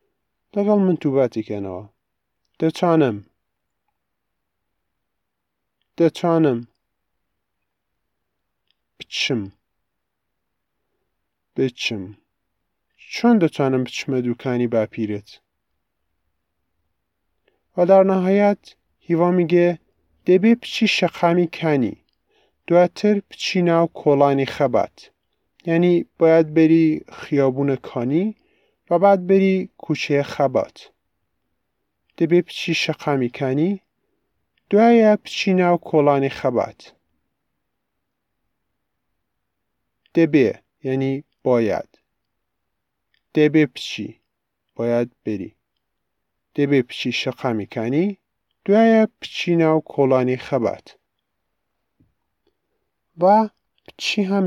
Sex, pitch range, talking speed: male, 120-180 Hz, 75 wpm